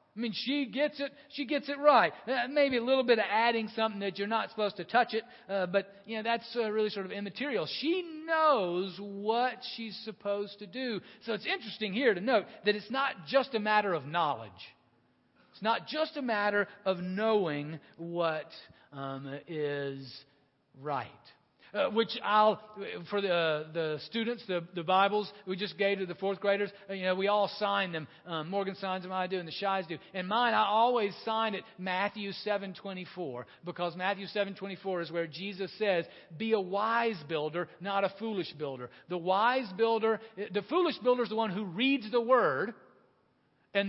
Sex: male